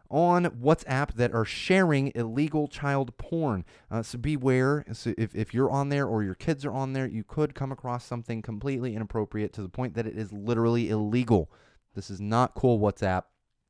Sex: male